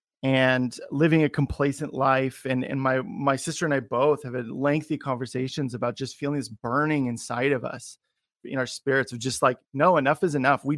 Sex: male